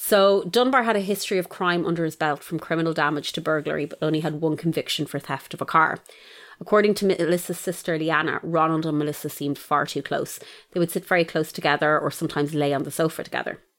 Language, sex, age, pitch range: English, female, 30-49, 150-185 Hz